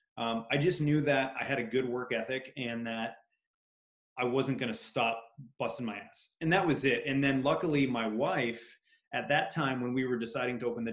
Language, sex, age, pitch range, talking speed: English, male, 20-39, 115-145 Hz, 220 wpm